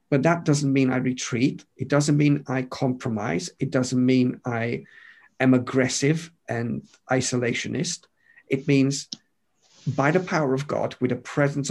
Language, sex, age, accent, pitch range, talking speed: English, male, 50-69, British, 125-145 Hz, 150 wpm